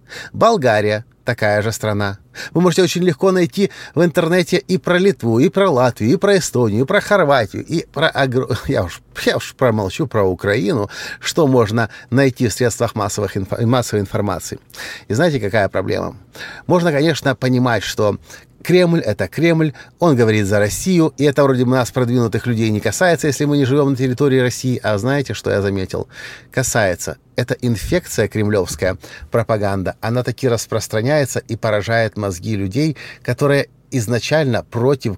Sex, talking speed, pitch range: male, 145 wpm, 110-140 Hz